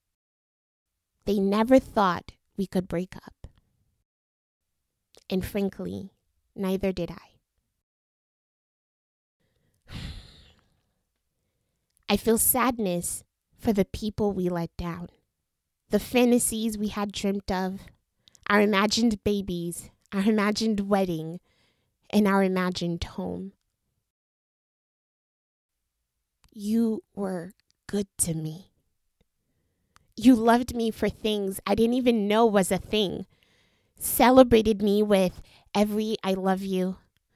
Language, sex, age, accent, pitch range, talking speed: English, female, 20-39, American, 165-210 Hz, 100 wpm